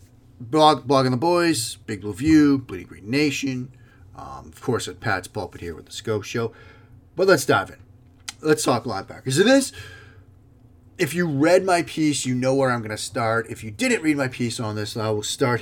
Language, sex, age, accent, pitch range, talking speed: English, male, 30-49, American, 105-130 Hz, 200 wpm